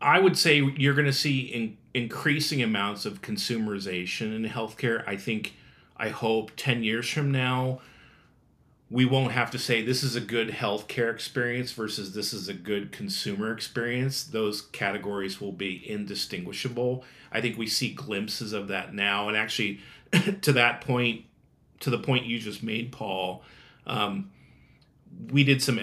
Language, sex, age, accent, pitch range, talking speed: English, male, 40-59, American, 105-130 Hz, 160 wpm